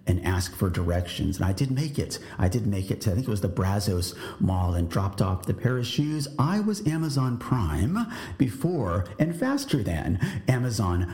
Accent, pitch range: American, 95-140 Hz